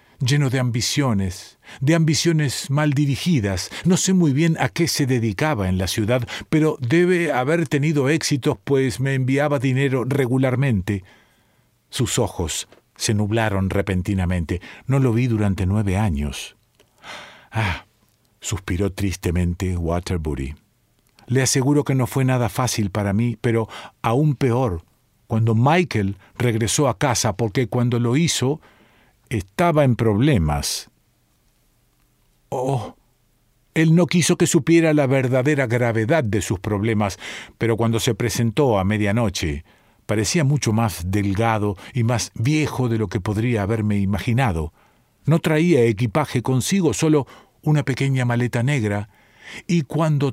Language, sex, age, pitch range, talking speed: Spanish, male, 50-69, 105-140 Hz, 130 wpm